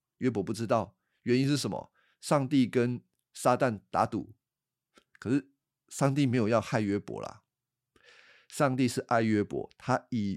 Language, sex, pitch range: Chinese, male, 105-140 Hz